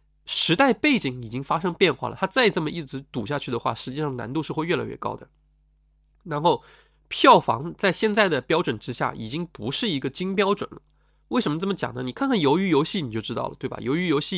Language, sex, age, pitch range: Chinese, male, 20-39, 135-195 Hz